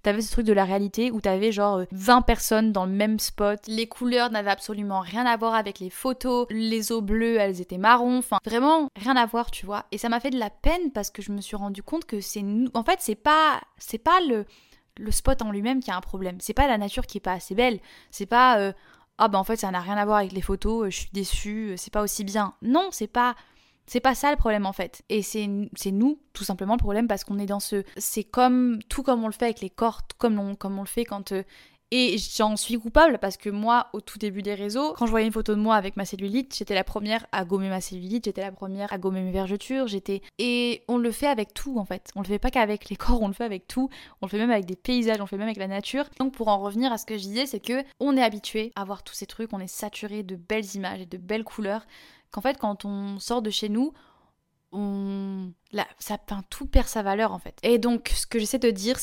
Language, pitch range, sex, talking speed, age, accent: French, 200-235 Hz, female, 270 wpm, 20-39, French